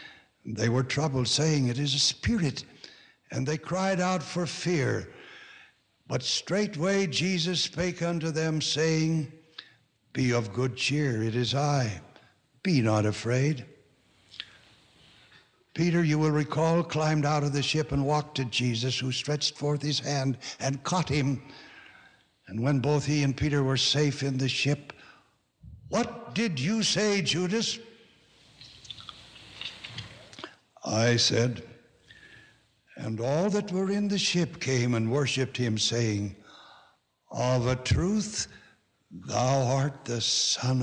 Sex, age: male, 60-79